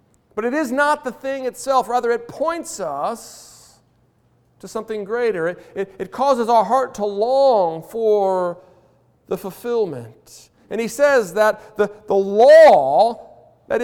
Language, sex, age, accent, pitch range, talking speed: English, male, 50-69, American, 200-265 Hz, 145 wpm